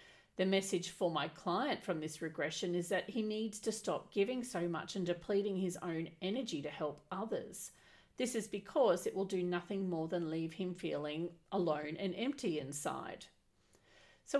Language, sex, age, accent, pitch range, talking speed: English, female, 40-59, Australian, 165-195 Hz, 175 wpm